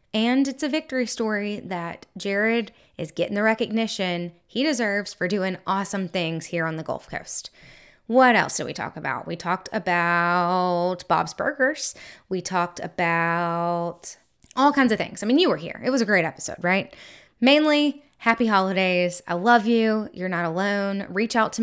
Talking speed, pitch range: 175 wpm, 180-235 Hz